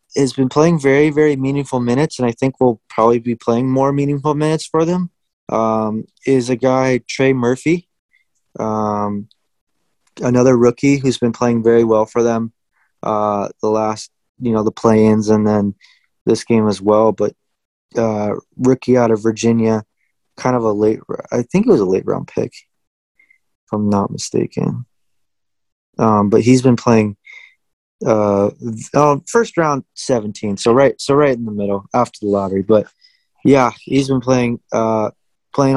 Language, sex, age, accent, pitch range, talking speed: English, male, 20-39, American, 110-135 Hz, 160 wpm